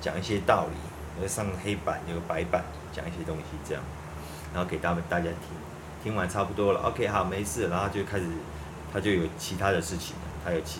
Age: 30-49